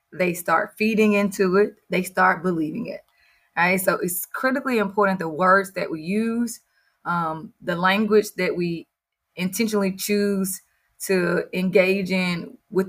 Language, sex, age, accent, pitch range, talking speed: English, female, 20-39, American, 175-205 Hz, 145 wpm